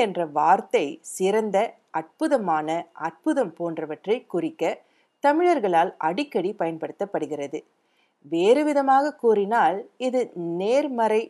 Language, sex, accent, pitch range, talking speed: Tamil, female, native, 165-265 Hz, 60 wpm